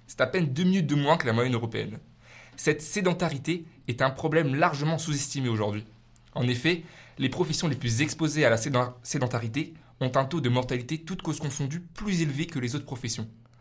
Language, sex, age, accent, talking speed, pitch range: French, male, 20-39, French, 190 wpm, 120-155 Hz